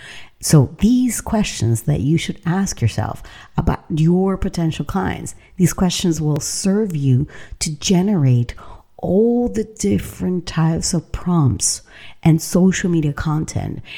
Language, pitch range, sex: English, 140-180 Hz, female